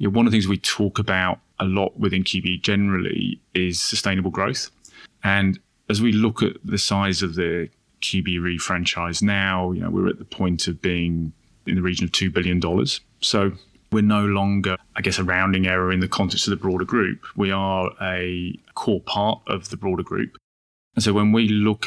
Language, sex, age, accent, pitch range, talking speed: English, male, 20-39, British, 90-100 Hz, 195 wpm